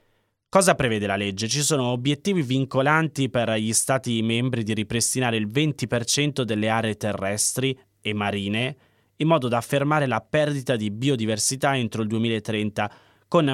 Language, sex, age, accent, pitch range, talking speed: Italian, male, 20-39, native, 110-140 Hz, 145 wpm